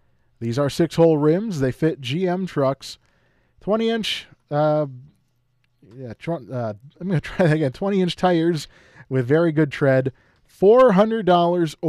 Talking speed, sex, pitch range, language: 115 wpm, male, 130-185 Hz, English